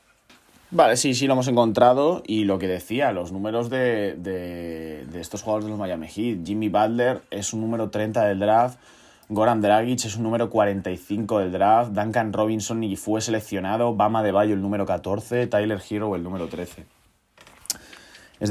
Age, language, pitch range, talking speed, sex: 20-39, Spanish, 85-110 Hz, 175 wpm, male